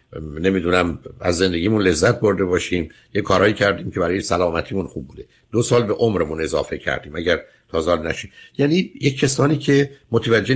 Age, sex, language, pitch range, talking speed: 60-79, male, Persian, 90-120 Hz, 160 wpm